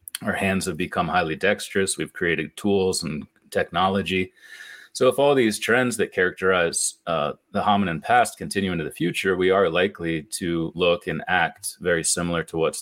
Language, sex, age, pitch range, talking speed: English, male, 30-49, 85-105 Hz, 175 wpm